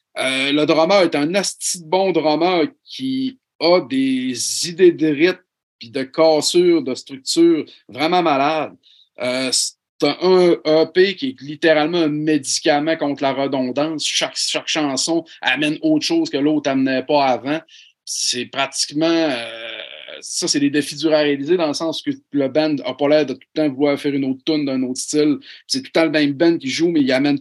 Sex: male